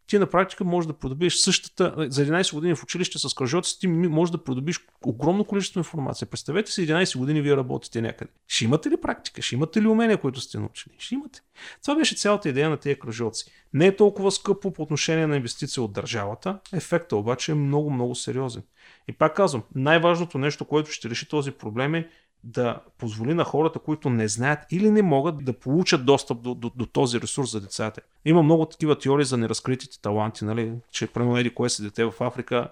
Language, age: Bulgarian, 40-59